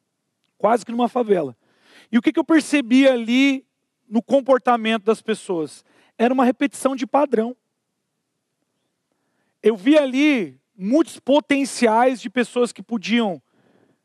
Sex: male